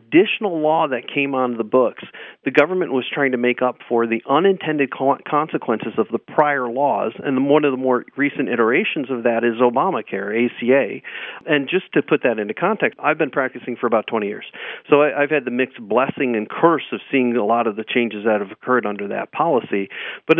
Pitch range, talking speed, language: 115-140 Hz, 205 wpm, English